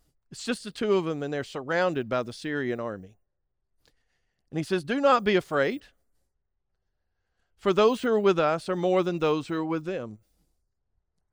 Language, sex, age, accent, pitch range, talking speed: English, male, 50-69, American, 125-175 Hz, 180 wpm